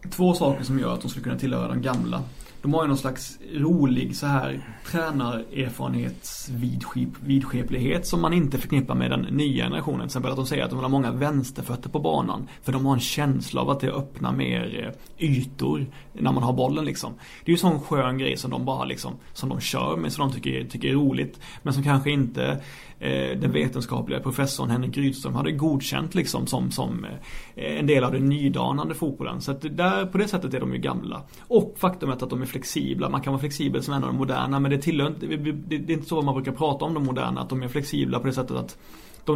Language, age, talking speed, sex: Swedish, 30-49, 220 wpm, male